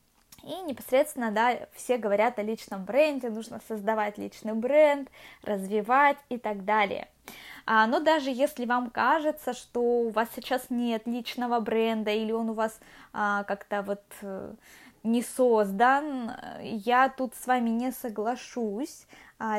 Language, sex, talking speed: Russian, female, 130 wpm